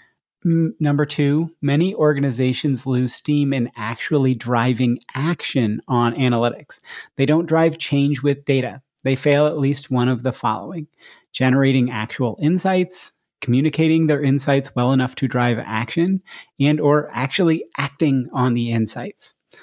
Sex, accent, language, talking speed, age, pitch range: male, American, English, 135 wpm, 30-49, 120-145 Hz